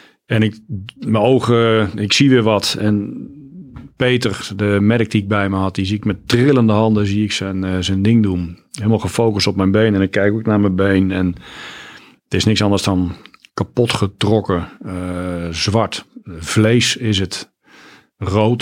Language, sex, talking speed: Dutch, male, 185 wpm